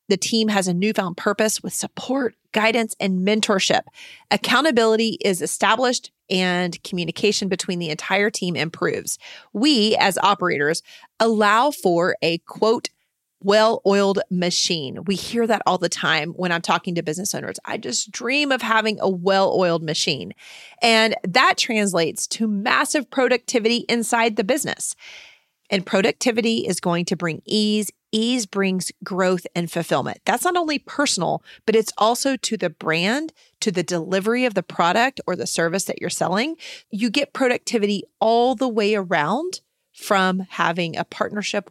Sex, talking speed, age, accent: female, 150 wpm, 30-49, American